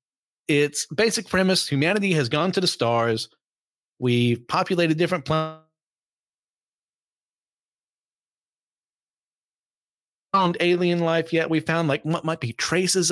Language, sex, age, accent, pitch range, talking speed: English, male, 30-49, American, 125-160 Hz, 115 wpm